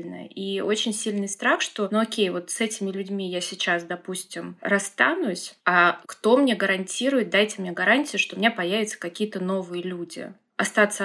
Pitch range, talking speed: 185-220 Hz, 165 wpm